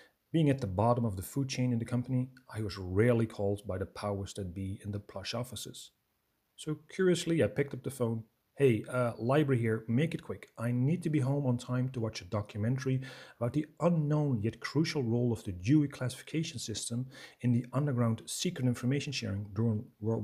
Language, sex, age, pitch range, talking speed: English, male, 40-59, 105-140 Hz, 200 wpm